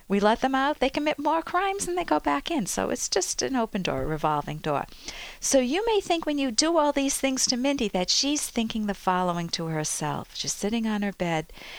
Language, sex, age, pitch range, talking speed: English, female, 50-69, 170-240 Hz, 235 wpm